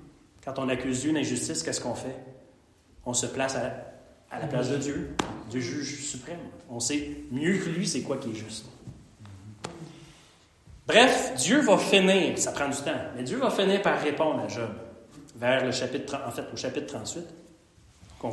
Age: 30-49